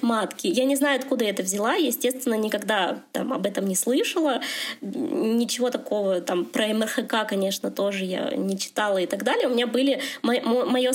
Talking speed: 170 wpm